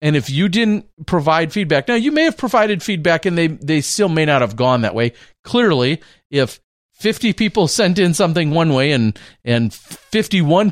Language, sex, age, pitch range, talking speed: English, male, 40-59, 115-155 Hz, 190 wpm